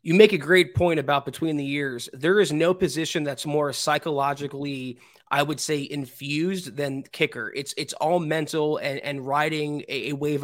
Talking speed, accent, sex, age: 185 wpm, American, male, 20-39